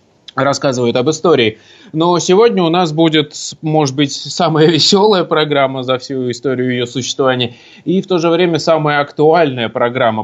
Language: Russian